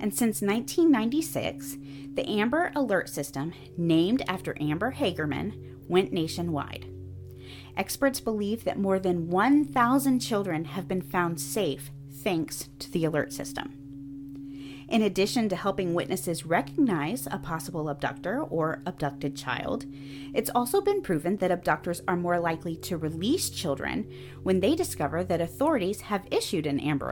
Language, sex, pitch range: English, female, 140-235 Hz